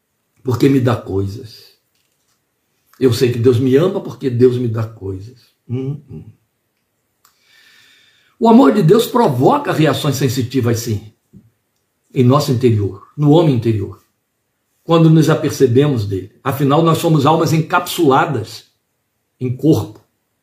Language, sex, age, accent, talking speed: Portuguese, male, 60-79, Brazilian, 125 wpm